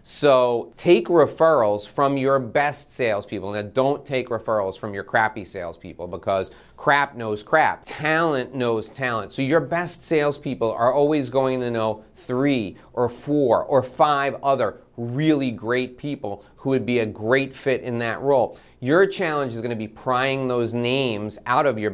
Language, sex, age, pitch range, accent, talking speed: English, male, 30-49, 115-145 Hz, American, 165 wpm